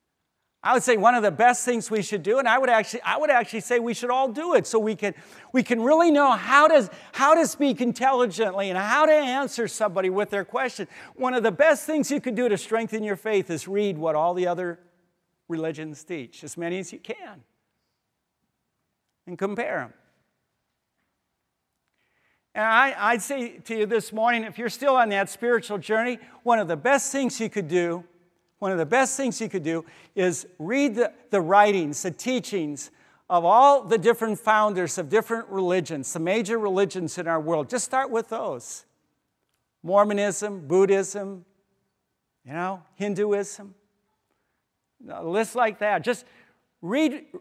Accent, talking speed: American, 175 wpm